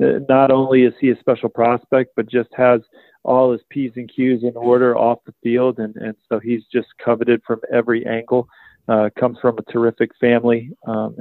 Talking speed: 195 wpm